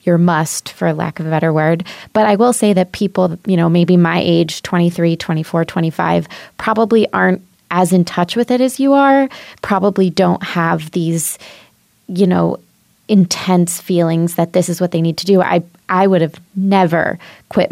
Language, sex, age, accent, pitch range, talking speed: English, female, 20-39, American, 170-200 Hz, 185 wpm